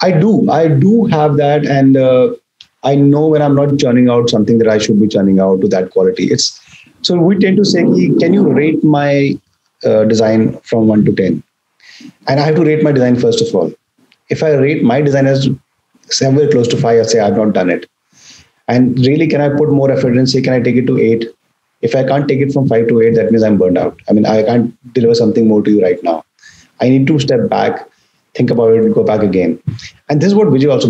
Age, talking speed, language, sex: 30-49, 240 wpm, English, male